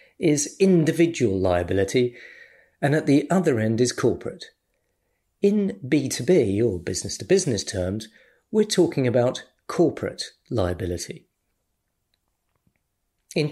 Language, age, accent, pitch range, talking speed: English, 40-59, British, 110-155 Hz, 95 wpm